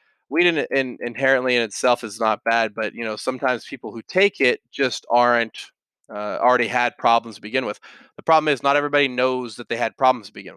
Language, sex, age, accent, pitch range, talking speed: English, male, 20-39, American, 115-135 Hz, 205 wpm